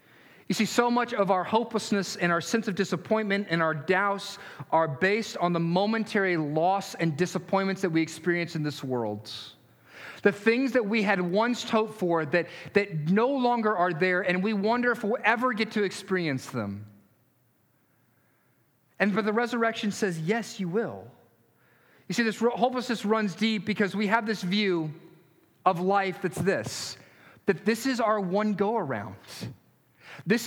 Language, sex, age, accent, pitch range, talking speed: English, male, 40-59, American, 160-220 Hz, 165 wpm